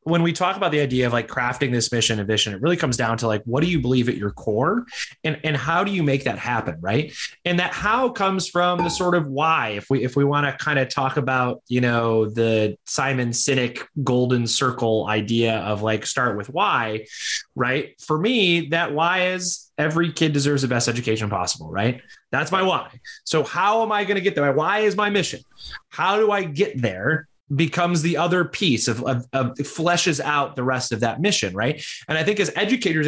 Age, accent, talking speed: 20-39, American, 220 wpm